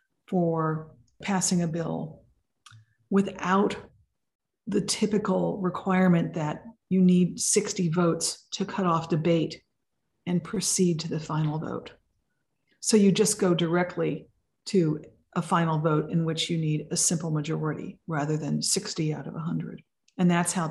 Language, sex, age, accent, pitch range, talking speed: English, female, 50-69, American, 160-195 Hz, 140 wpm